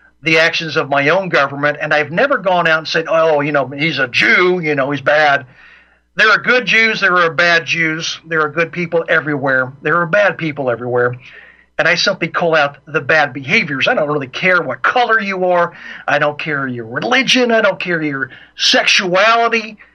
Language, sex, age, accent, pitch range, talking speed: English, male, 50-69, American, 145-190 Hz, 200 wpm